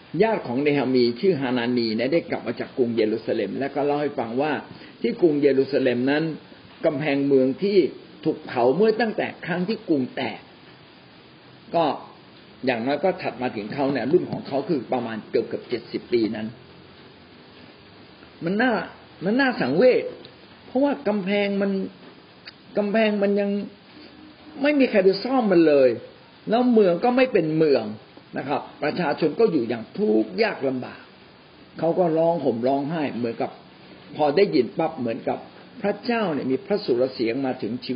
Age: 60-79